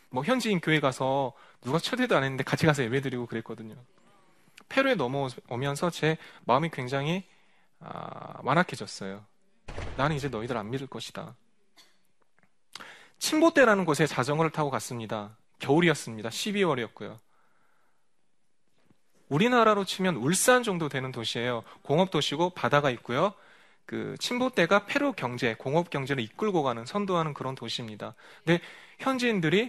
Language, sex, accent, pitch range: Korean, male, native, 125-185 Hz